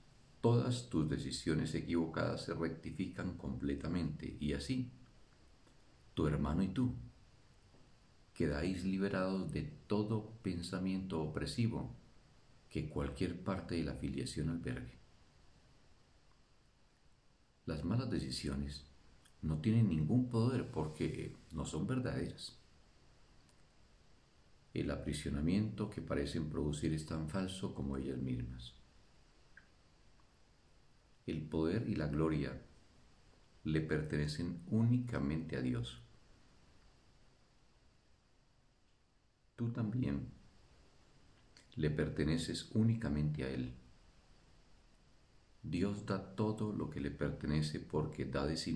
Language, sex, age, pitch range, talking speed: Spanish, male, 50-69, 75-110 Hz, 95 wpm